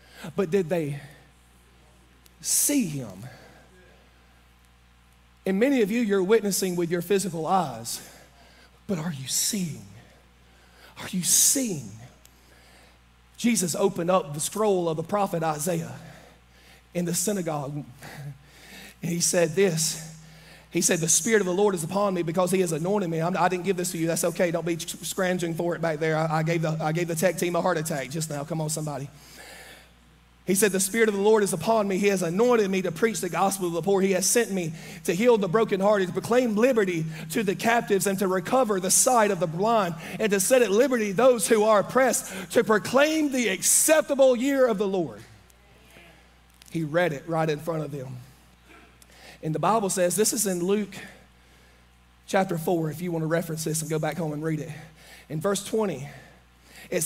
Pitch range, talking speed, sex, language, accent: 145-200 Hz, 185 wpm, male, English, American